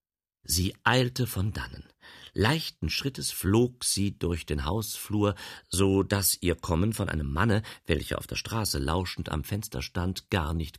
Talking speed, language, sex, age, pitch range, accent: 155 wpm, German, male, 50-69, 90-125 Hz, German